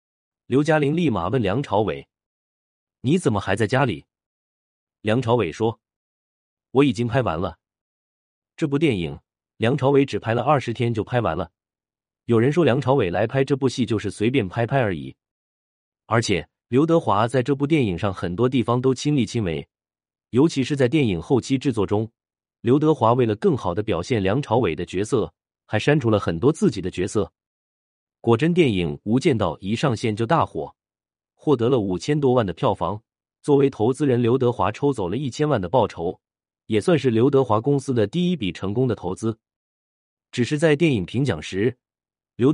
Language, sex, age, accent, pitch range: Chinese, male, 30-49, native, 95-135 Hz